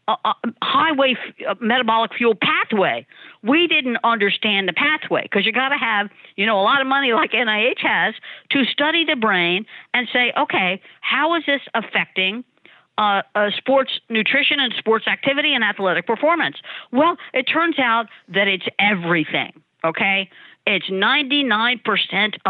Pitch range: 190-255 Hz